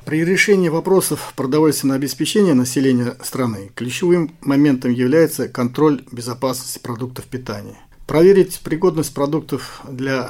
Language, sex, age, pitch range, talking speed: Russian, male, 40-59, 130-160 Hz, 105 wpm